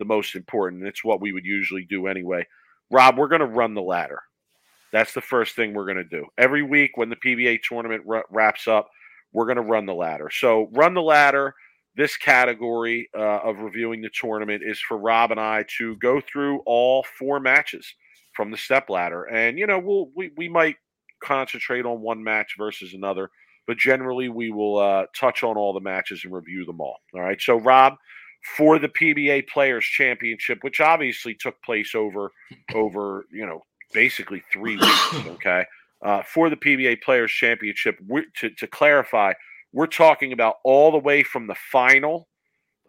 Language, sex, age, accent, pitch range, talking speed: English, male, 40-59, American, 105-135 Hz, 185 wpm